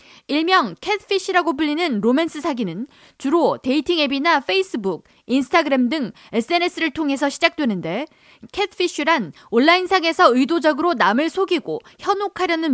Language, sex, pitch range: Korean, female, 255-345 Hz